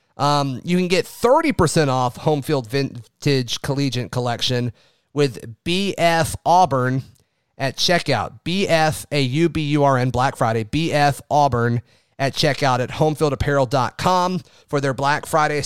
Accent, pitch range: American, 125-160 Hz